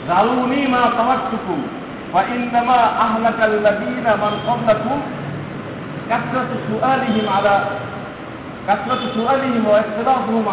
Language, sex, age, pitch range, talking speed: Bengali, male, 50-69, 195-245 Hz, 85 wpm